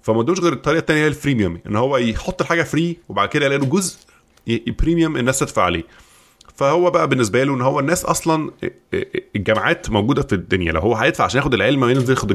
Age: 20-39